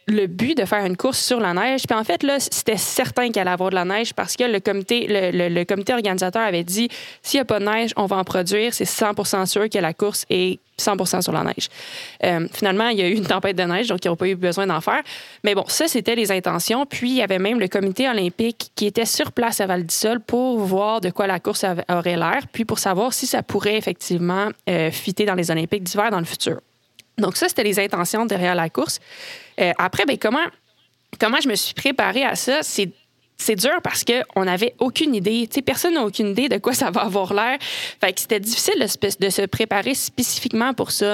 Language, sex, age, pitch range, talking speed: French, female, 20-39, 185-235 Hz, 240 wpm